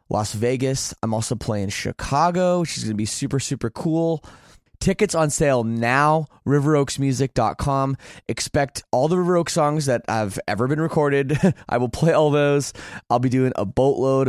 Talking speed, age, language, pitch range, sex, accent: 170 wpm, 20-39, English, 105-140 Hz, male, American